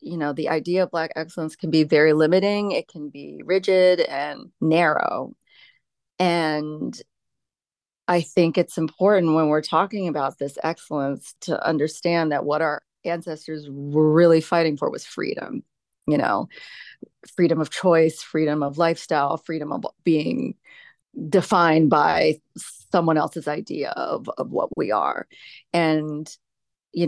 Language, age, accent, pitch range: English, 30-49, American, 155-185 Hz